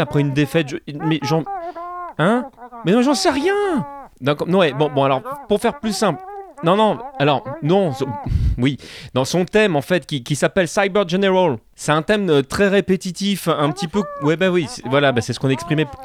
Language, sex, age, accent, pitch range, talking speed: French, male, 30-49, French, 140-195 Hz, 215 wpm